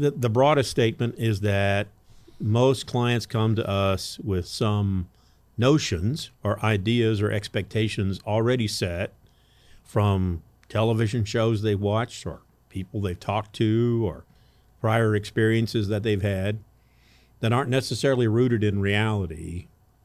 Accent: American